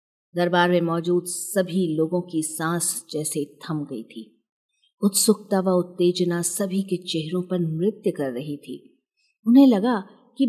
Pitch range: 165-230 Hz